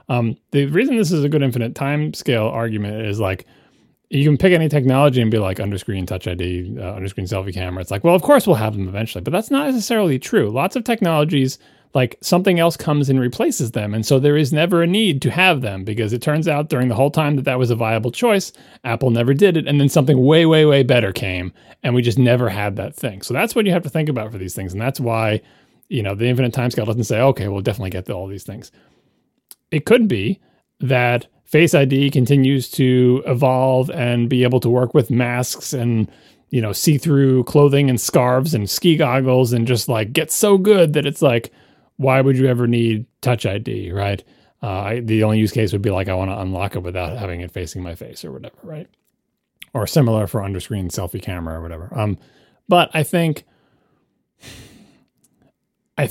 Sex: male